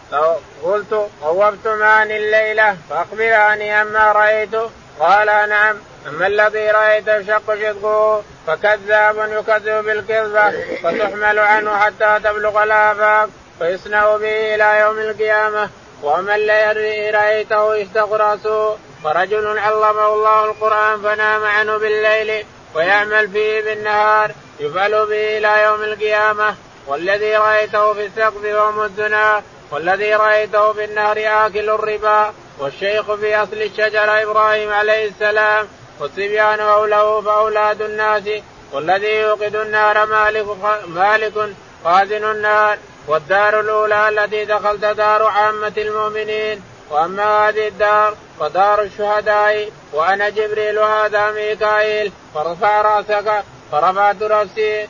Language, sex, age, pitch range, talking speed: Arabic, male, 20-39, 210-215 Hz, 100 wpm